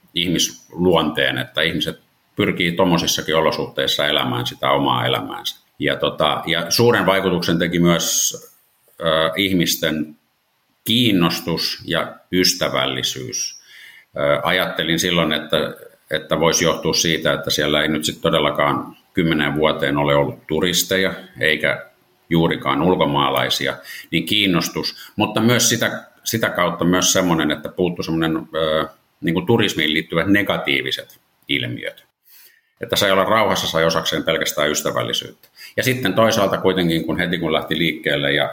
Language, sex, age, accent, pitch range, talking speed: Finnish, male, 50-69, native, 75-95 Hz, 130 wpm